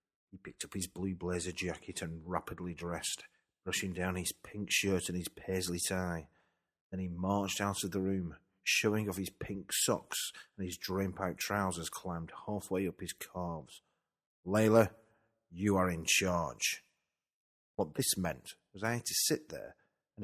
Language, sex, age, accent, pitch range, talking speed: English, male, 40-59, British, 85-100 Hz, 165 wpm